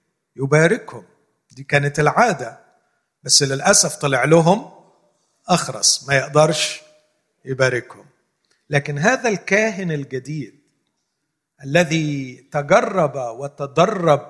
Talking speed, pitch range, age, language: 80 wpm, 135-185 Hz, 50-69, Arabic